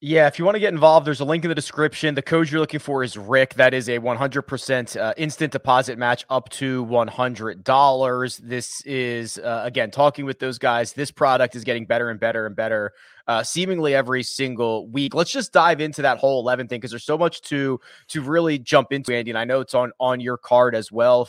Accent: American